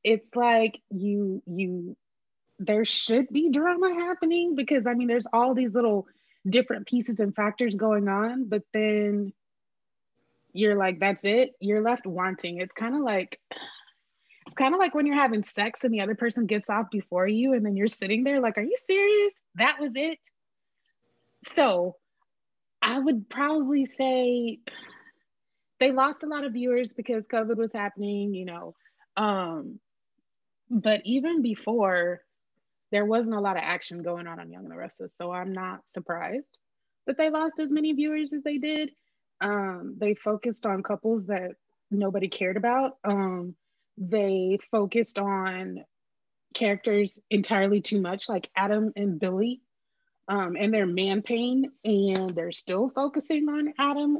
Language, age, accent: English, 20-39, American